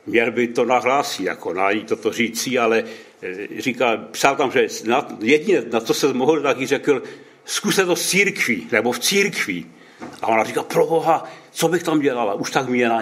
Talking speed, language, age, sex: 195 wpm, Czech, 70-89, male